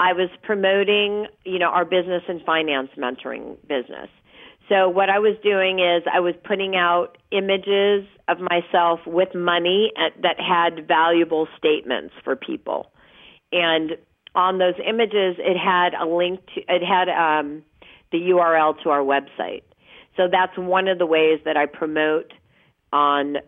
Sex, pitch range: female, 165-190 Hz